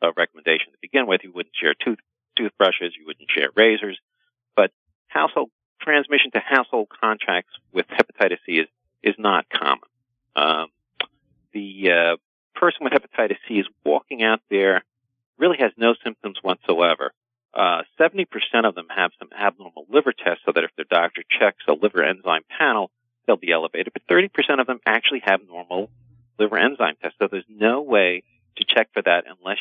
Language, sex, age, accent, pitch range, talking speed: English, male, 50-69, American, 95-120 Hz, 165 wpm